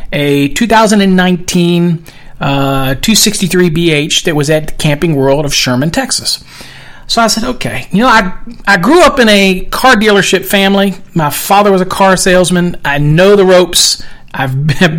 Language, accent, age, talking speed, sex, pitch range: English, American, 40-59, 155 wpm, male, 155-195 Hz